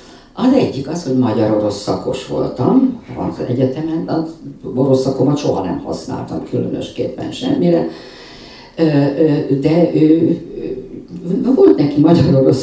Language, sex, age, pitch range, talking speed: Hungarian, female, 50-69, 130-160 Hz, 105 wpm